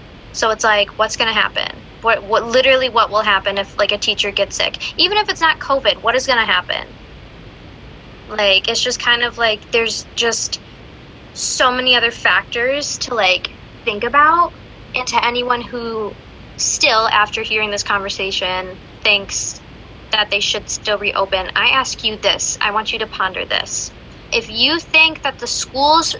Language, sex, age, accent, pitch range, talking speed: English, female, 10-29, American, 210-265 Hz, 175 wpm